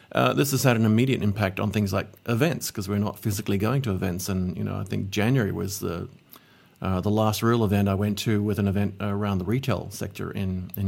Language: English